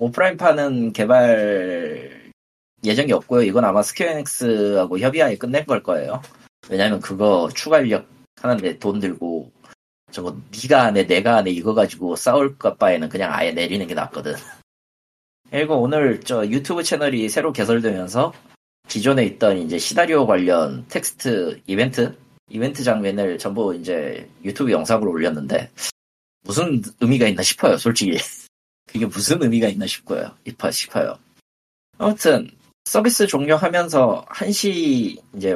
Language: Korean